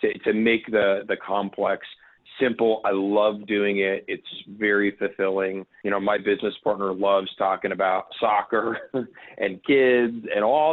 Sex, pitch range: male, 100-125 Hz